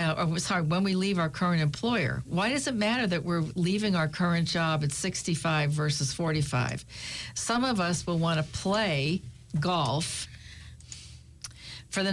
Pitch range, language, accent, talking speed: 150-190 Hz, English, American, 160 wpm